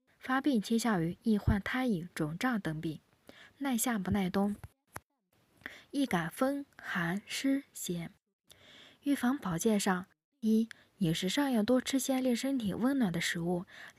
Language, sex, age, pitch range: Chinese, female, 20-39, 185-255 Hz